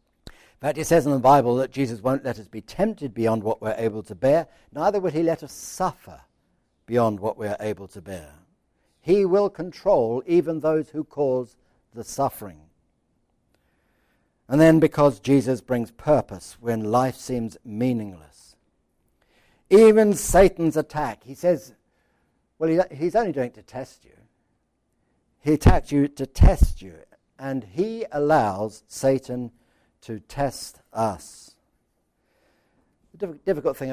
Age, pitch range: 60-79, 115-160 Hz